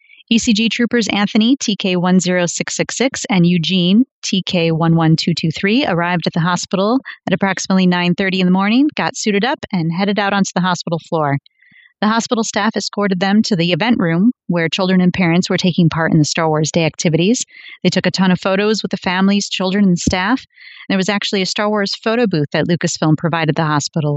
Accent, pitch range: American, 170-215 Hz